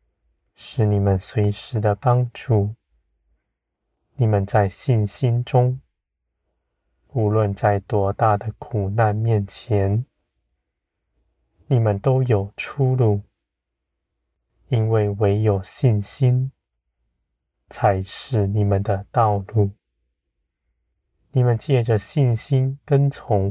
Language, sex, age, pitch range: Chinese, male, 20-39, 75-110 Hz